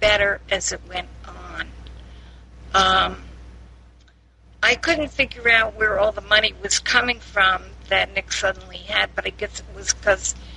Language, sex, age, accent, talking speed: English, female, 50-69, American, 155 wpm